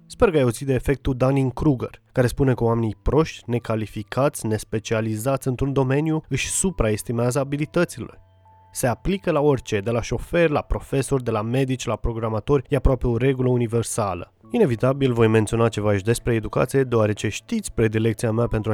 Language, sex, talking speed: Romanian, male, 155 wpm